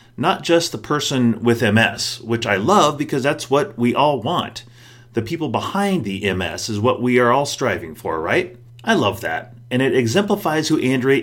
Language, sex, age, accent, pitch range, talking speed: English, male, 30-49, American, 110-140 Hz, 190 wpm